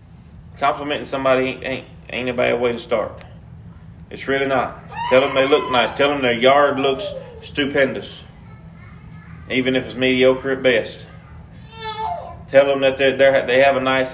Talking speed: 165 wpm